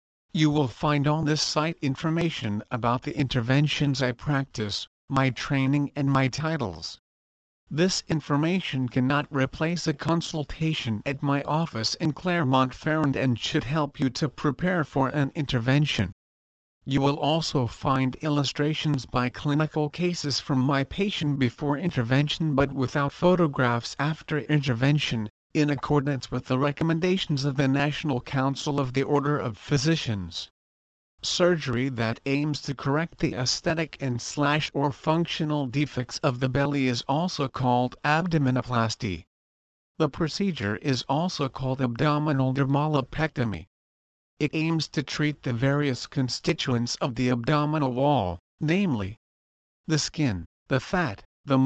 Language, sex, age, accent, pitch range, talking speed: English, male, 50-69, American, 125-150 Hz, 130 wpm